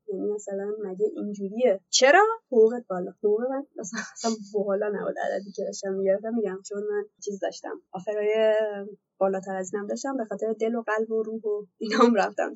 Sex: female